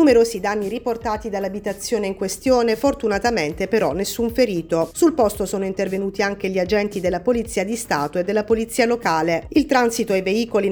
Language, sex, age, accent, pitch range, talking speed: Italian, female, 40-59, native, 190-235 Hz, 160 wpm